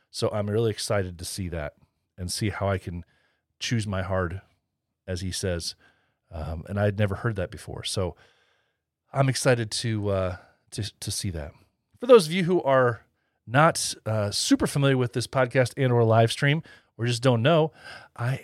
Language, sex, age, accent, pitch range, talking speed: English, male, 40-59, American, 105-145 Hz, 185 wpm